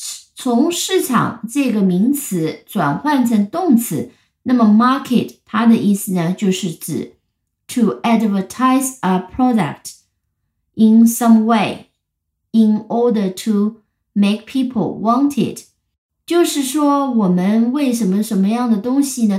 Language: Chinese